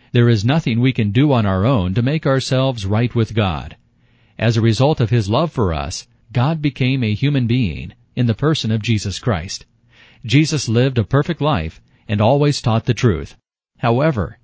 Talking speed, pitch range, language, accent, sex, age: 185 wpm, 105-130 Hz, English, American, male, 40-59